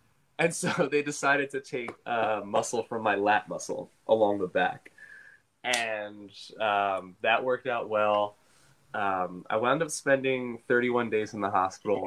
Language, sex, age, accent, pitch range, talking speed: English, male, 20-39, American, 100-125 Hz, 155 wpm